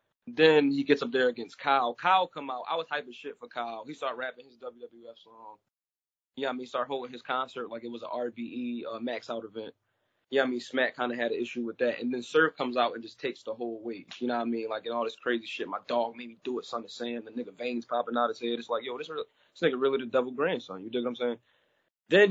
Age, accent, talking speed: 20-39, American, 290 wpm